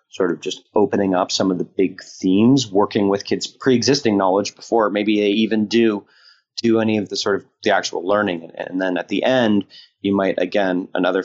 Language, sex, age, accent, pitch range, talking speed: English, male, 30-49, American, 90-110 Hz, 205 wpm